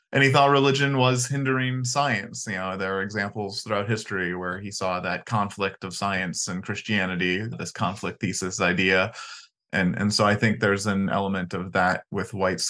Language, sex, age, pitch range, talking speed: English, male, 20-39, 95-120 Hz, 185 wpm